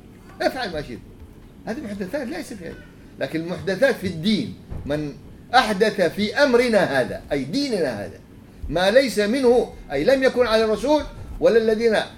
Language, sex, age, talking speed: English, male, 50-69, 145 wpm